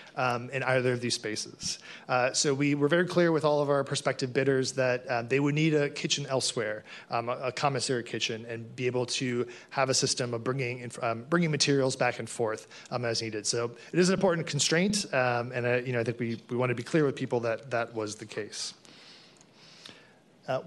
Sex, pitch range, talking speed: male, 125-150 Hz, 220 wpm